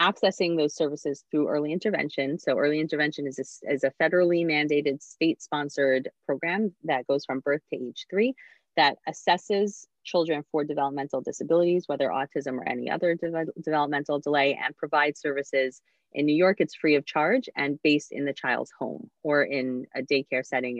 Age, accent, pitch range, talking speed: 30-49, American, 135-170 Hz, 165 wpm